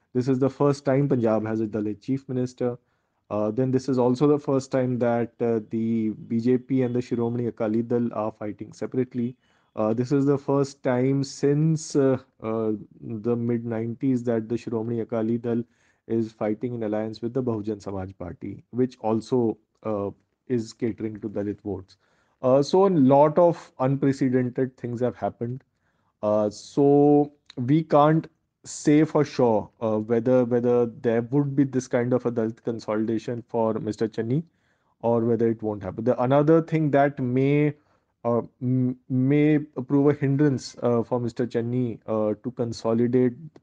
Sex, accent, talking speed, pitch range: male, Indian, 160 wpm, 110-130 Hz